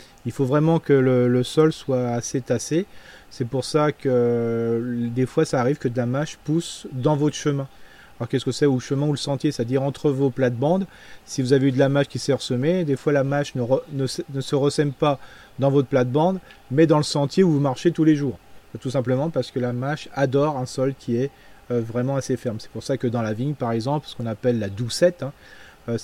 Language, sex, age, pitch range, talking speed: French, male, 30-49, 125-150 Hz, 235 wpm